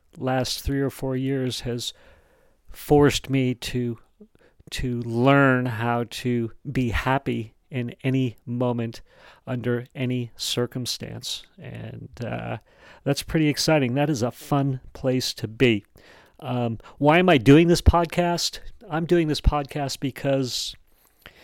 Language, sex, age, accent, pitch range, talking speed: English, male, 40-59, American, 120-140 Hz, 125 wpm